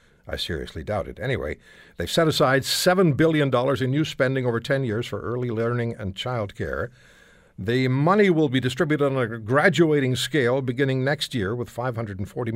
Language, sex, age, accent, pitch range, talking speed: English, male, 60-79, American, 95-145 Hz, 170 wpm